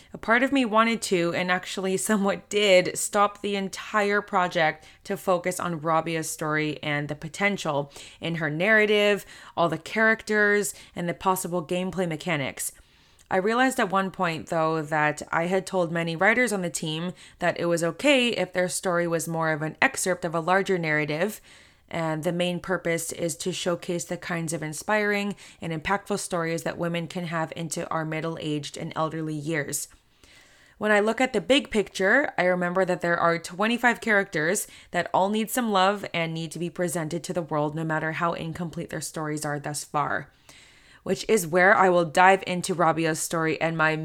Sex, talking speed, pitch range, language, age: female, 185 wpm, 160-200 Hz, English, 20-39